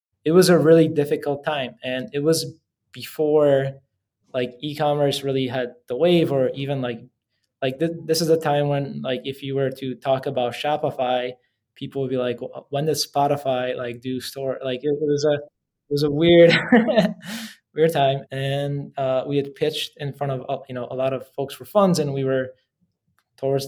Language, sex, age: English, male, 20-39